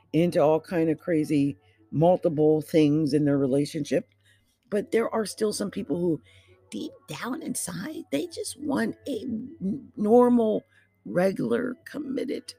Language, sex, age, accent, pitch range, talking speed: English, female, 50-69, American, 145-190 Hz, 130 wpm